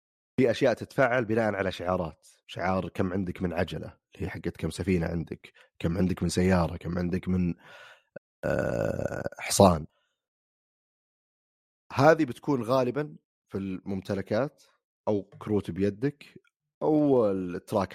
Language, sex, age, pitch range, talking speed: Arabic, male, 30-49, 90-110 Hz, 115 wpm